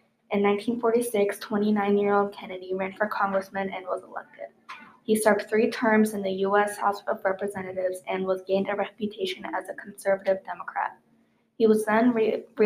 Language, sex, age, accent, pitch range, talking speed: English, female, 20-39, American, 195-215 Hz, 155 wpm